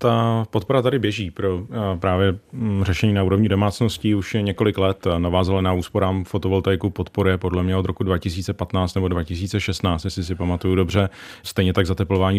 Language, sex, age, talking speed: Czech, male, 30-49, 155 wpm